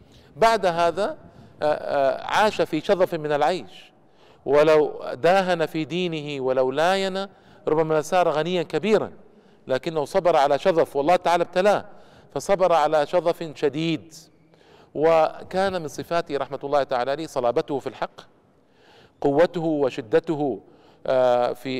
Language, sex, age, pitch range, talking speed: Arabic, male, 50-69, 150-185 Hz, 115 wpm